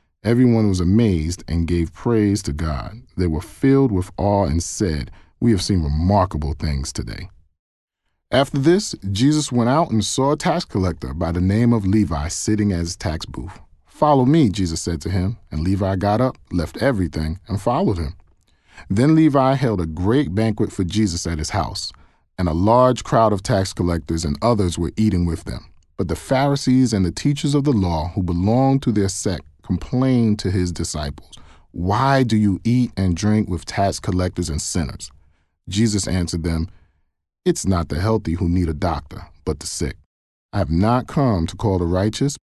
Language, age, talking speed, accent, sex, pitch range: English, 40-59, 185 wpm, American, male, 85-115 Hz